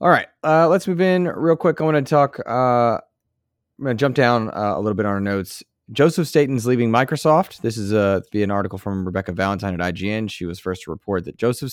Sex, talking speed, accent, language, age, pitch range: male, 245 wpm, American, English, 20-39, 100-120 Hz